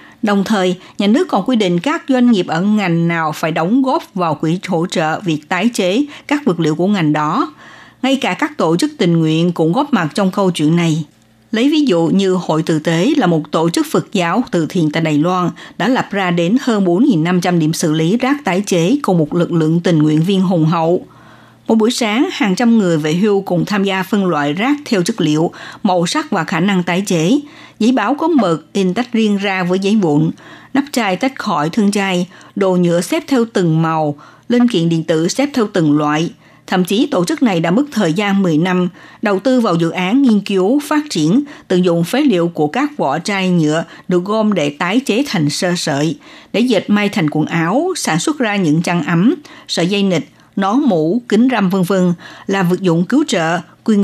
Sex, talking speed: female, 225 wpm